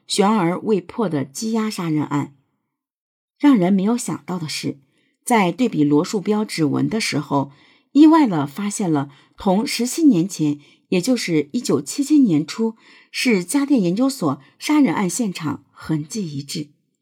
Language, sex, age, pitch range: Chinese, female, 50-69, 150-225 Hz